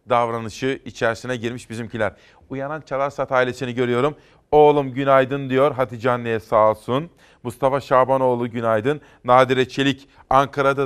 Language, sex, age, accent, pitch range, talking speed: Turkish, male, 40-59, native, 125-145 Hz, 115 wpm